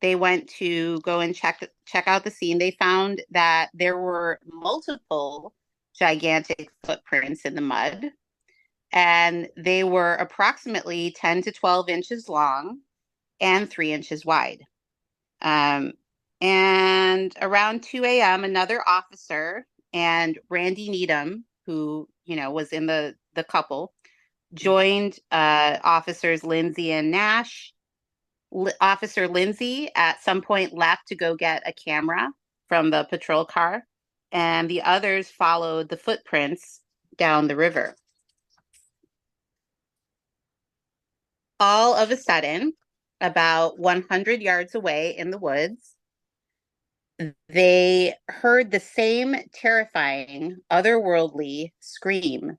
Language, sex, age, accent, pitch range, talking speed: English, female, 30-49, American, 165-195 Hz, 115 wpm